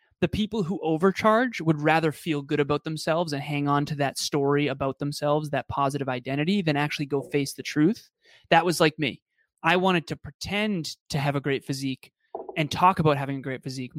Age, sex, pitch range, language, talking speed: 20-39, male, 145-180 Hz, English, 200 wpm